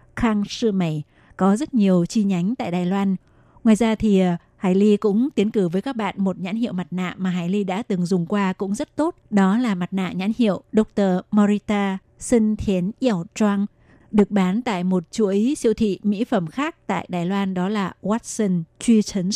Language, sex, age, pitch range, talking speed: Vietnamese, female, 20-39, 185-215 Hz, 205 wpm